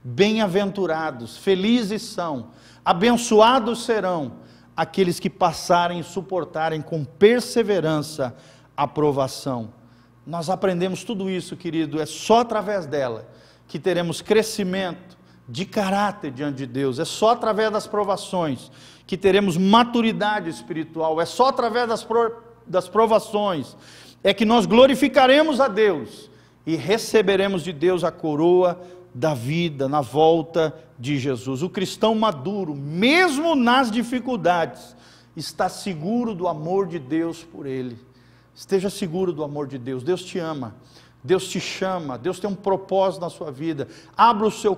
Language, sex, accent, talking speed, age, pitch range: Portuguese, male, Brazilian, 135 wpm, 40-59, 150-210 Hz